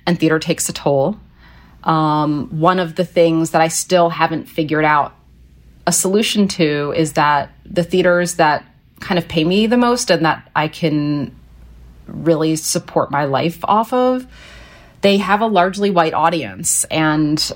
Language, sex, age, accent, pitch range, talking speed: English, female, 30-49, American, 145-180 Hz, 160 wpm